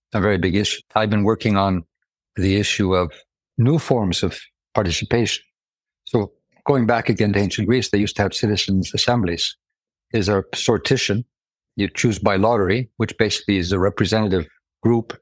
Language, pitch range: English, 95-120 Hz